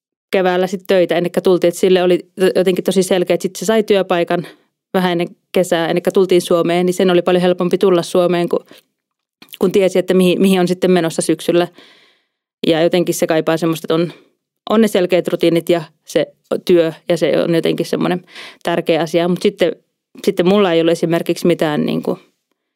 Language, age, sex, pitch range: Finnish, 20-39, female, 170-185 Hz